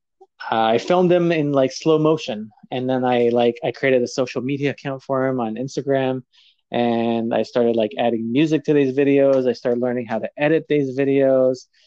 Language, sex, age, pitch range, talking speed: English, male, 20-39, 120-155 Hz, 195 wpm